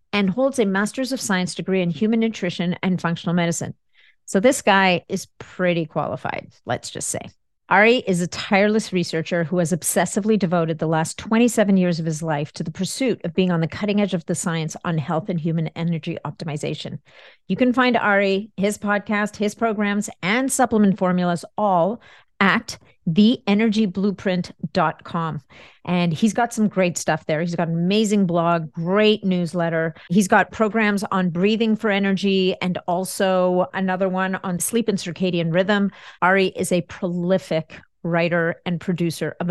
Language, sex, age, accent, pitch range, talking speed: English, female, 40-59, American, 170-210 Hz, 165 wpm